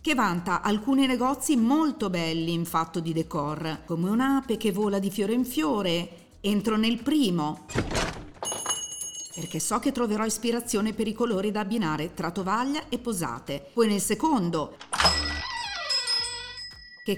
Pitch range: 170-260 Hz